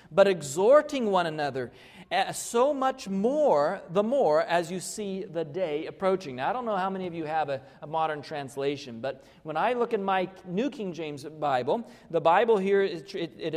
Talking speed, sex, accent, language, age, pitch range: 195 wpm, male, American, English, 40-59, 155-210 Hz